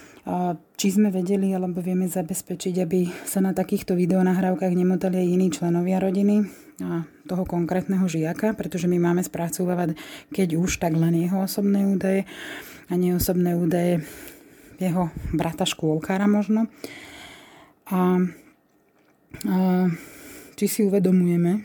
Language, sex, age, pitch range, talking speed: Slovak, female, 20-39, 170-195 Hz, 120 wpm